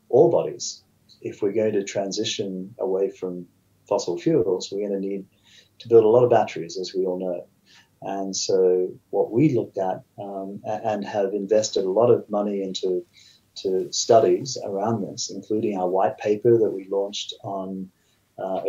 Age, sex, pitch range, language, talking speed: 30-49, male, 95-115 Hz, English, 170 wpm